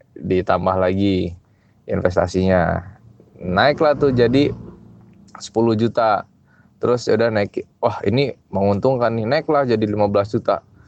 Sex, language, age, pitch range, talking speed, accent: male, Indonesian, 20-39, 100-135 Hz, 105 wpm, native